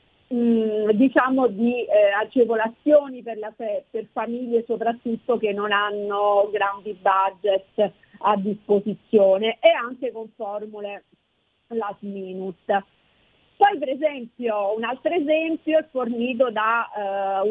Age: 40-59